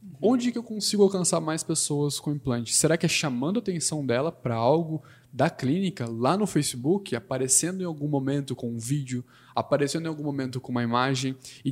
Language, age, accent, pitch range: Portuguese, 10-29, Brazilian, 125-165 Hz